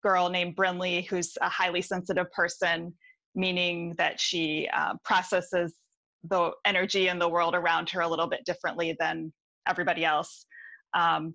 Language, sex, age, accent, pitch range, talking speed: English, female, 20-39, American, 165-195 Hz, 150 wpm